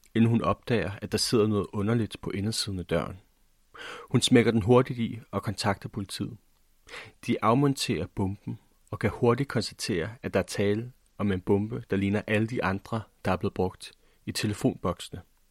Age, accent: 30-49, native